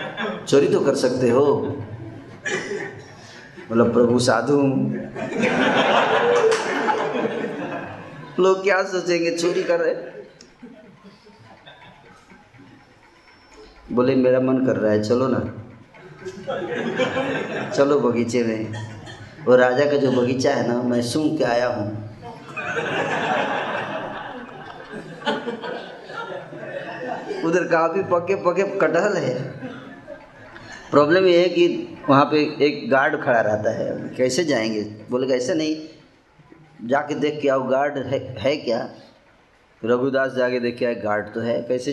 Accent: native